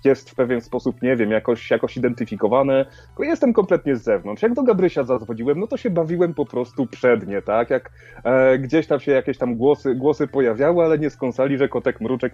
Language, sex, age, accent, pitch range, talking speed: Polish, male, 30-49, native, 130-170 Hz, 200 wpm